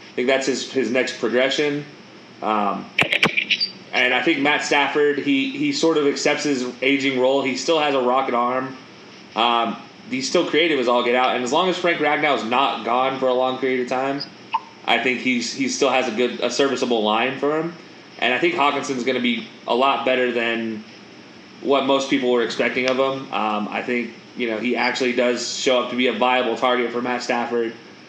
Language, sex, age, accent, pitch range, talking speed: English, male, 20-39, American, 120-145 Hz, 210 wpm